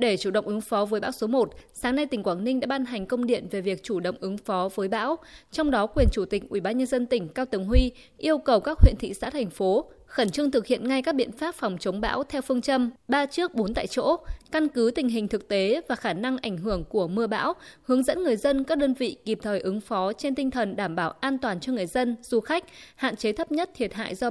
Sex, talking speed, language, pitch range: female, 265 wpm, Vietnamese, 210-275 Hz